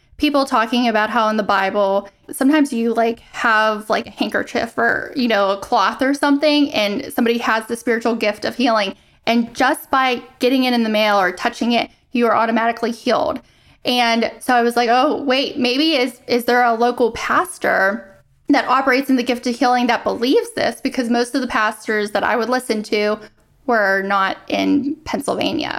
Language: English